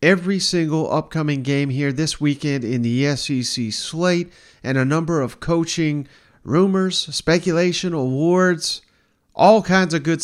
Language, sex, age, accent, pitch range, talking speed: English, male, 50-69, American, 135-175 Hz, 135 wpm